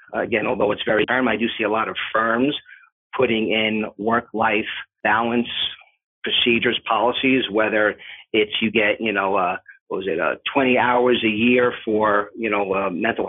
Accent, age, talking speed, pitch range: American, 50-69, 170 wpm, 105-125 Hz